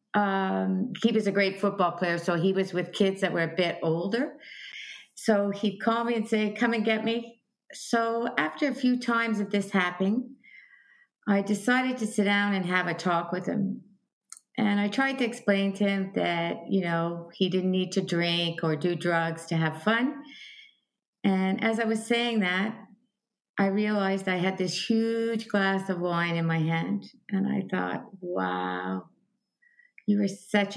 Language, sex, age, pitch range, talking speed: English, female, 50-69, 180-230 Hz, 180 wpm